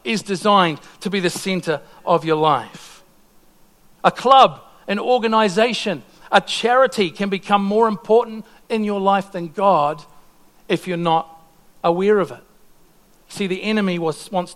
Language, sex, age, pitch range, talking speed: English, male, 50-69, 175-220 Hz, 140 wpm